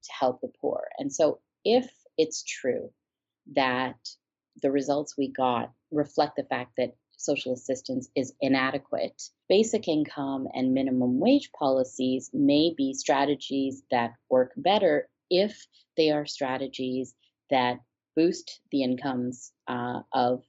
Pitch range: 130-150 Hz